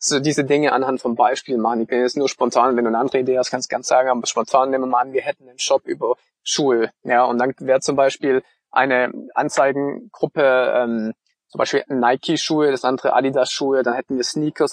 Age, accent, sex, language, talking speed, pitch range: 20-39, German, male, German, 215 wpm, 125-150 Hz